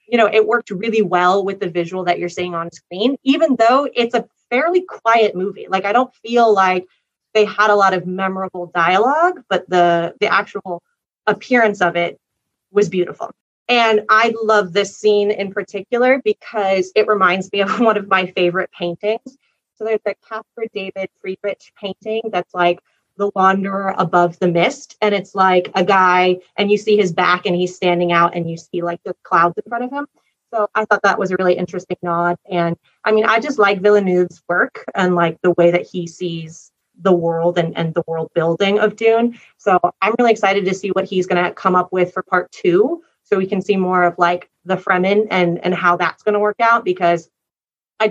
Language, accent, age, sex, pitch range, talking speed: English, American, 30-49, female, 180-215 Hz, 205 wpm